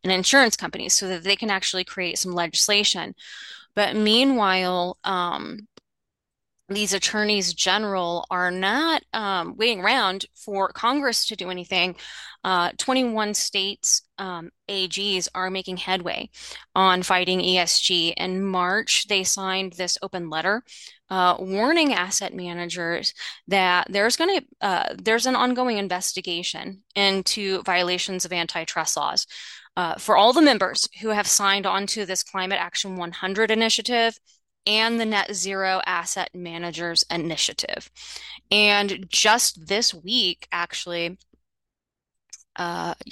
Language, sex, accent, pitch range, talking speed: English, female, American, 180-215 Hz, 125 wpm